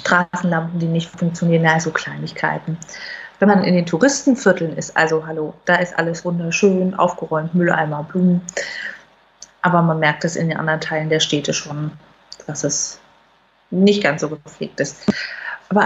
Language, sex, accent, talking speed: German, female, German, 150 wpm